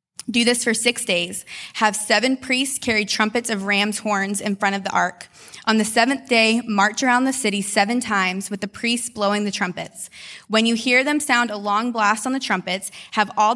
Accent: American